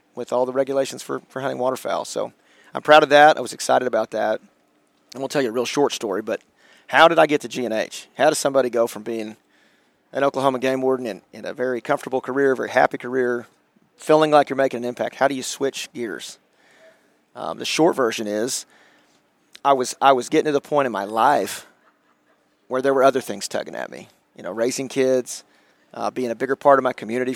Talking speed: 215 wpm